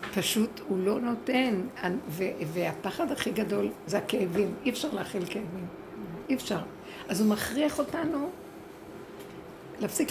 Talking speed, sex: 125 wpm, female